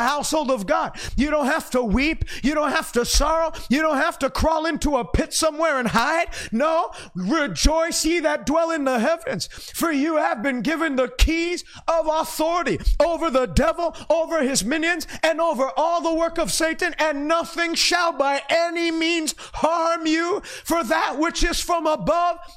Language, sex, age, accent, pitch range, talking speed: English, male, 30-49, American, 245-330 Hz, 180 wpm